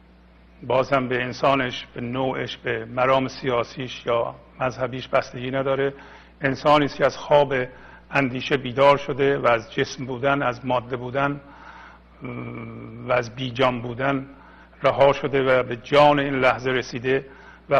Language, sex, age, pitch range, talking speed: Persian, male, 50-69, 105-140 Hz, 130 wpm